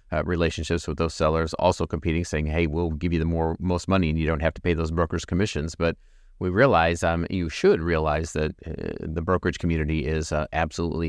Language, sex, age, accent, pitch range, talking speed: English, male, 40-59, American, 75-85 Hz, 215 wpm